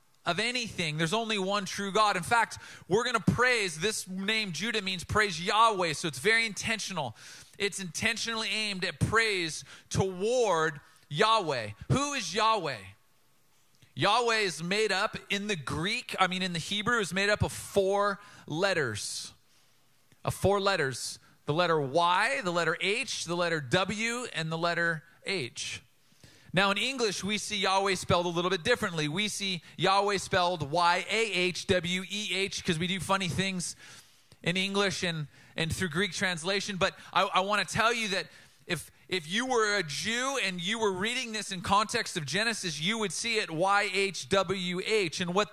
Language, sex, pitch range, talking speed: English, male, 165-210 Hz, 165 wpm